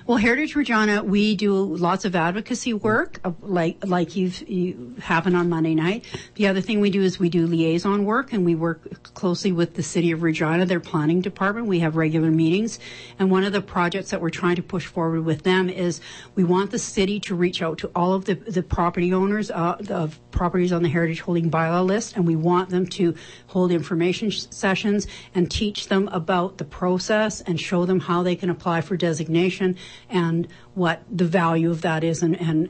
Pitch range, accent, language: 165-195 Hz, American, English